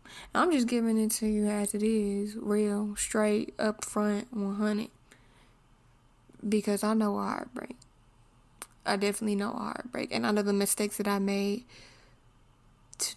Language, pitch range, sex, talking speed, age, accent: English, 135-210 Hz, female, 150 wpm, 10-29, American